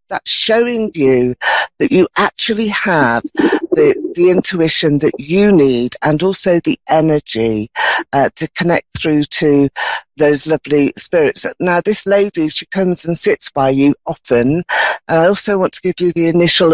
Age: 50-69